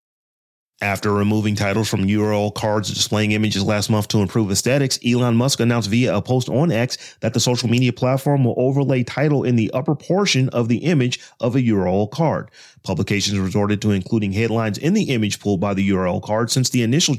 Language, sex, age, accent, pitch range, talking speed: English, male, 30-49, American, 105-140 Hz, 195 wpm